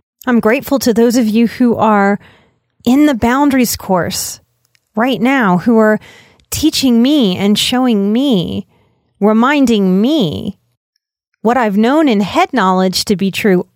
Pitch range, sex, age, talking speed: 190-245 Hz, female, 30-49, 140 wpm